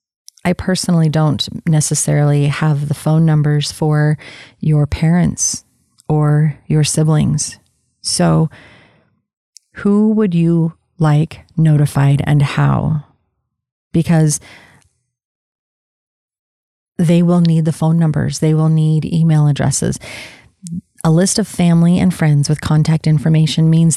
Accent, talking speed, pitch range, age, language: American, 110 wpm, 145-170 Hz, 30-49, English